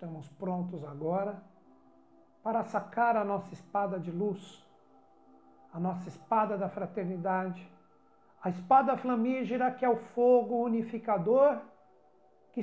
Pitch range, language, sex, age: 170-240 Hz, Portuguese, male, 60-79